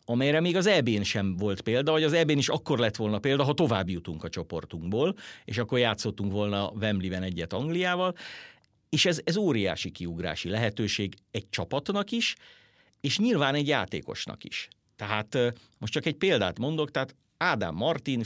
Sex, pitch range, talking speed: male, 95-130 Hz, 165 wpm